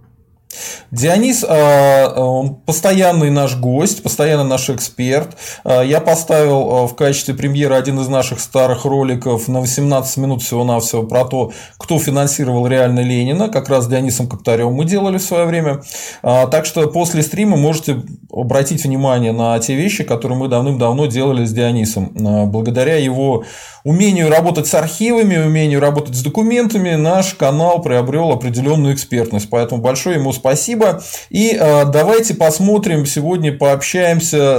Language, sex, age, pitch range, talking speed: Russian, male, 20-39, 125-160 Hz, 135 wpm